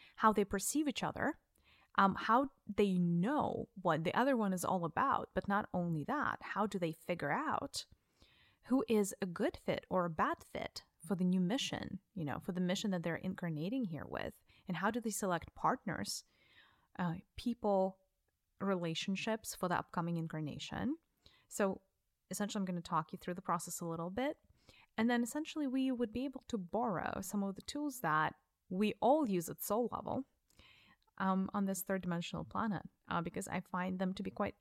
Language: English